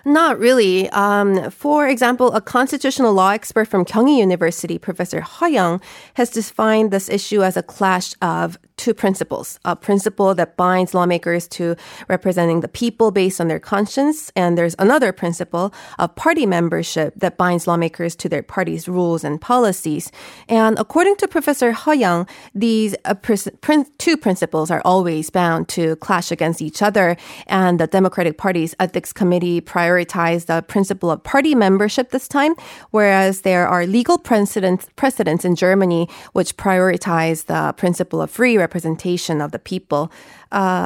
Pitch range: 175-220 Hz